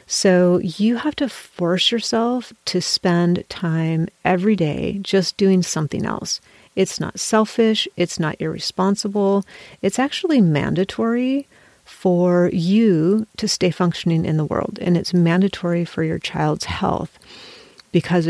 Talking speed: 130 wpm